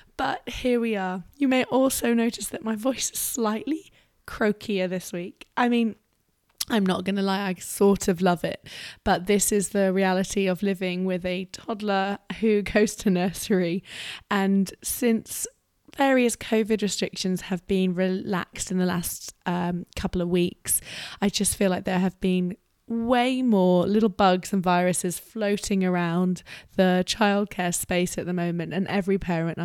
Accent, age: British, 20-39